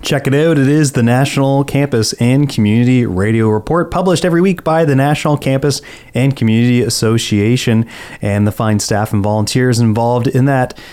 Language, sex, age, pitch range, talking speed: English, male, 30-49, 115-145 Hz, 170 wpm